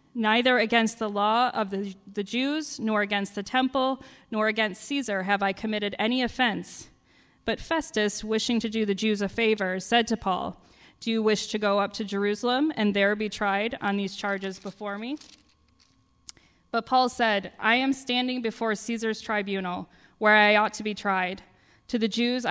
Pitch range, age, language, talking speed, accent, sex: 200-230 Hz, 20-39, English, 180 wpm, American, female